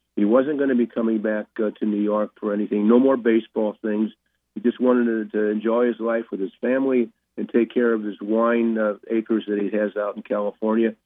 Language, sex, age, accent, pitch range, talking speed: English, male, 50-69, American, 100-115 Hz, 230 wpm